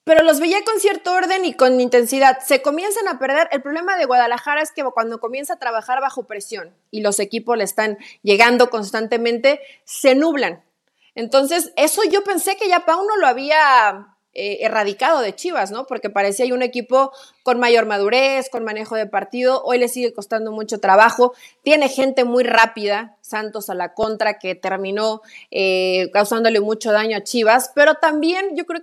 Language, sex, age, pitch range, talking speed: Spanish, female, 30-49, 225-285 Hz, 180 wpm